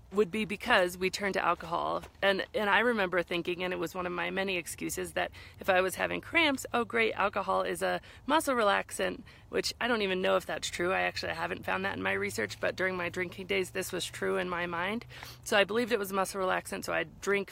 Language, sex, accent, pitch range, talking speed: English, female, American, 175-205 Hz, 245 wpm